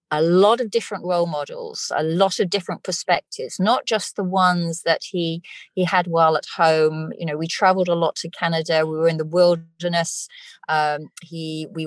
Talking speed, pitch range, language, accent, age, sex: 190 wpm, 155-190 Hz, English, British, 30-49, female